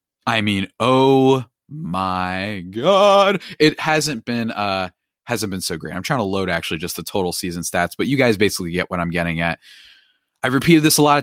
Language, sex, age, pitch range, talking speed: English, male, 20-39, 90-125 Hz, 200 wpm